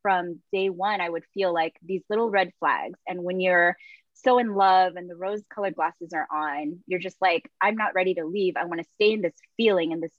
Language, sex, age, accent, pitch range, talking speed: English, female, 20-39, American, 175-220 Hz, 235 wpm